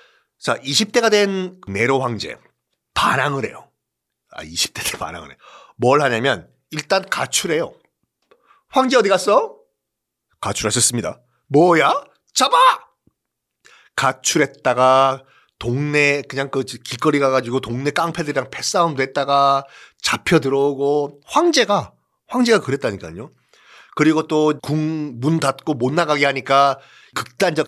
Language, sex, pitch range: Korean, male, 135-195 Hz